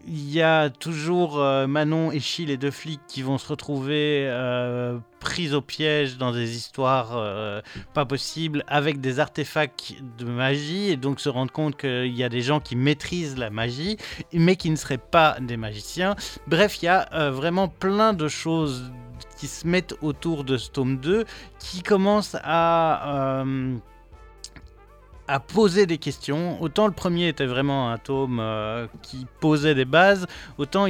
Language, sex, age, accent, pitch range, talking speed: French, male, 30-49, French, 130-170 Hz, 170 wpm